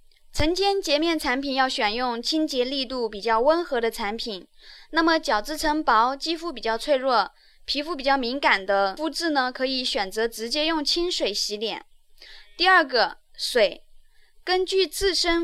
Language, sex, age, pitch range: Chinese, female, 10-29, 240-320 Hz